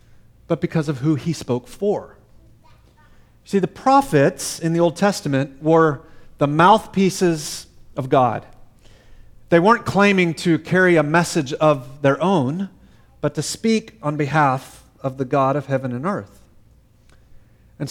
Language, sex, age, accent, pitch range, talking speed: English, male, 40-59, American, 135-180 Hz, 140 wpm